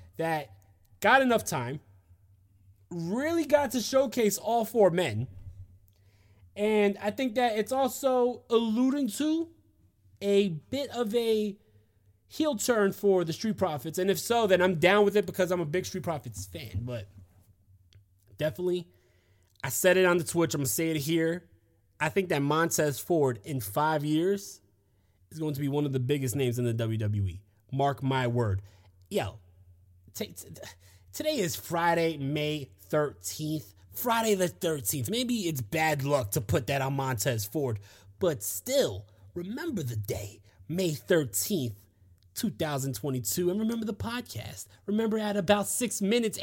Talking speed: 150 wpm